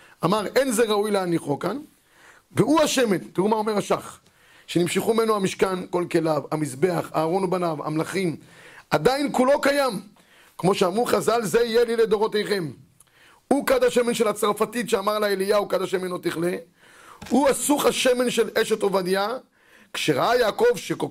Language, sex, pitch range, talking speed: Hebrew, male, 185-245 Hz, 150 wpm